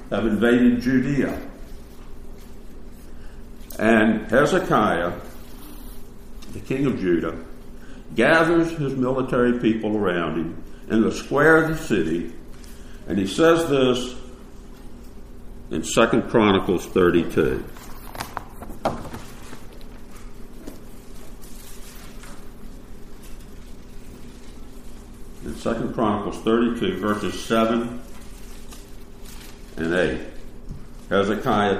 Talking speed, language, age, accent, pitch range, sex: 70 wpm, English, 60-79, American, 105-135 Hz, male